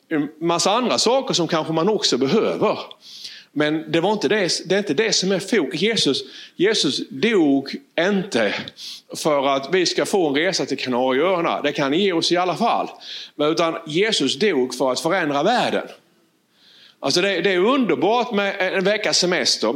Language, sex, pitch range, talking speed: Swedish, male, 145-205 Hz, 175 wpm